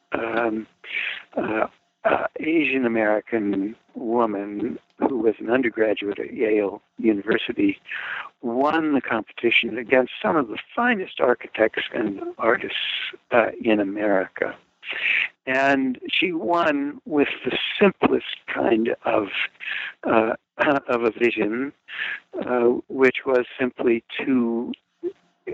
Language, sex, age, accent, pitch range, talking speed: English, male, 60-79, American, 110-140 Hz, 110 wpm